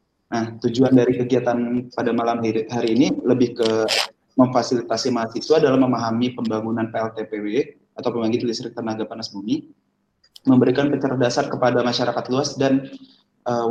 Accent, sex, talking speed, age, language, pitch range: native, male, 135 wpm, 20-39, Indonesian, 115-135 Hz